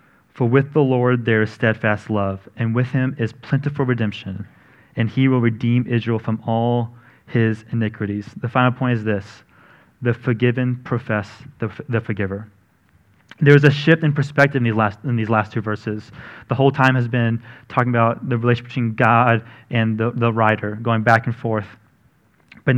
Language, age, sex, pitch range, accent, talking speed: English, 30-49, male, 115-135 Hz, American, 180 wpm